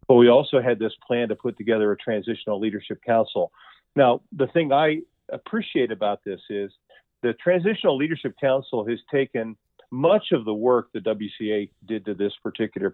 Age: 50-69